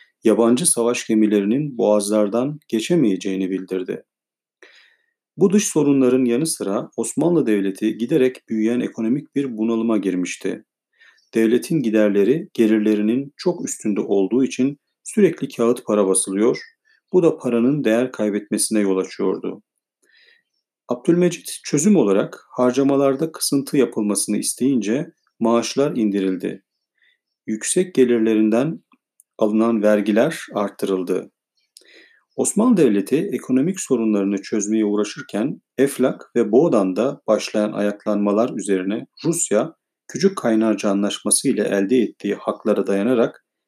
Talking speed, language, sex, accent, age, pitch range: 100 wpm, Turkish, male, native, 40-59, 105-140 Hz